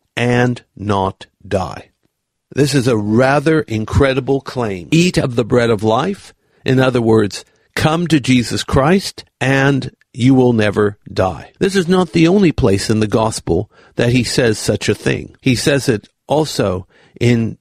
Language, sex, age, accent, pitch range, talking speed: English, male, 50-69, American, 110-145 Hz, 160 wpm